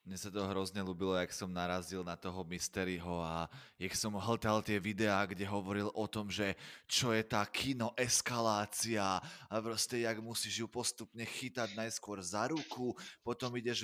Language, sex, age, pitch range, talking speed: Slovak, male, 20-39, 105-120 Hz, 165 wpm